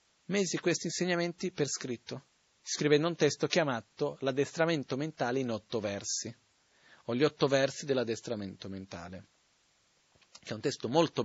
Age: 40-59